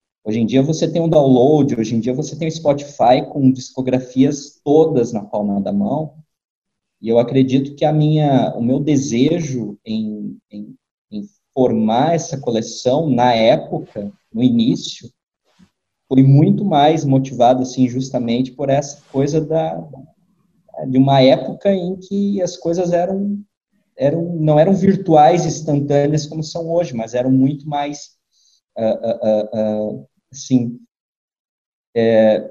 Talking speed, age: 140 wpm, 20-39